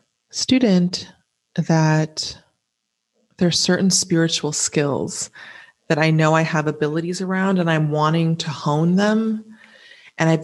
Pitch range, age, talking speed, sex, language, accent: 165-200 Hz, 30-49, 125 wpm, female, English, American